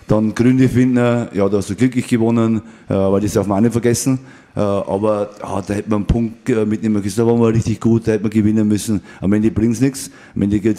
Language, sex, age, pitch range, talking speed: German, male, 30-49, 90-105 Hz, 240 wpm